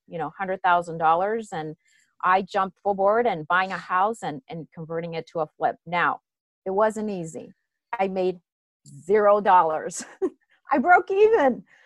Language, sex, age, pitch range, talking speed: English, female, 30-49, 170-220 Hz, 145 wpm